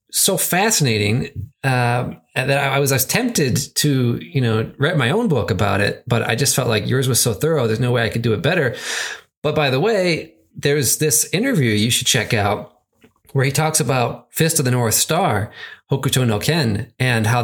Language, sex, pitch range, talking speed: English, male, 115-160 Hz, 205 wpm